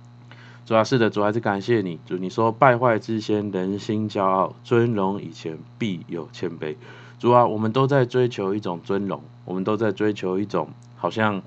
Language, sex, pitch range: Chinese, male, 95-120 Hz